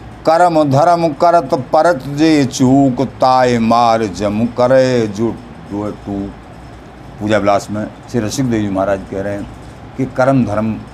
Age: 50-69